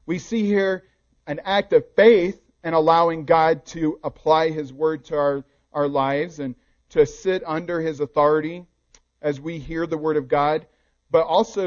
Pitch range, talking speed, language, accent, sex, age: 140-175 Hz, 170 wpm, English, American, male, 40-59